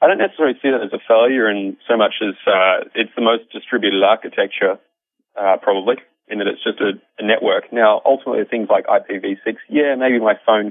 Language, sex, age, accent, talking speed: English, male, 30-49, Australian, 200 wpm